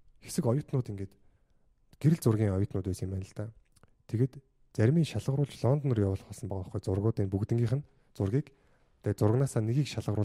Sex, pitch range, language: male, 100-125 Hz, Korean